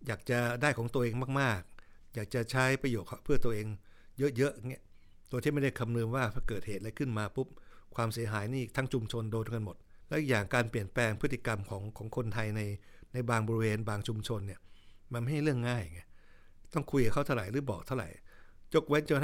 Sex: male